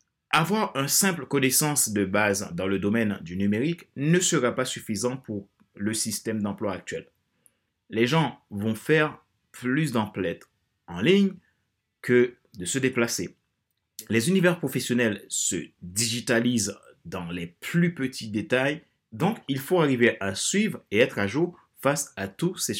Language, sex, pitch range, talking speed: French, male, 100-135 Hz, 145 wpm